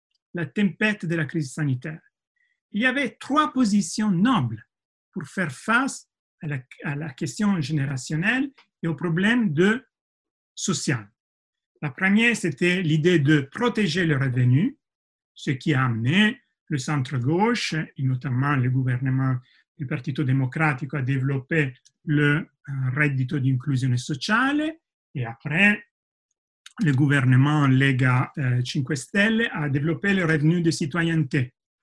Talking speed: 125 wpm